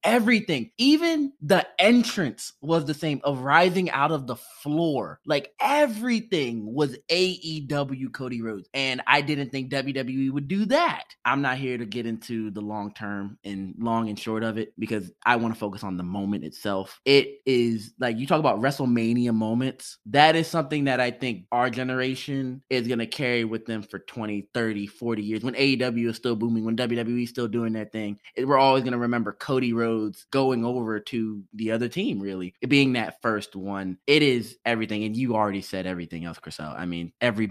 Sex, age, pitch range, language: male, 20-39, 105-135 Hz, English